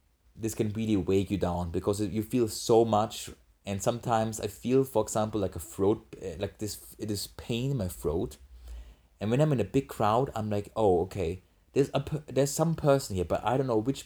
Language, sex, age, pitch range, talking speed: English, male, 30-49, 85-115 Hz, 215 wpm